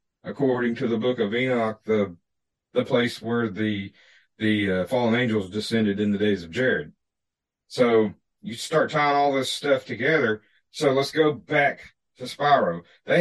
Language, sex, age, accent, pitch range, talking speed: English, male, 50-69, American, 110-135 Hz, 165 wpm